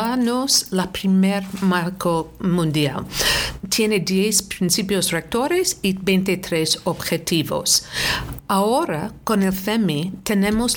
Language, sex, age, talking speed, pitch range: Spanish, female, 50-69, 90 wpm, 170-220 Hz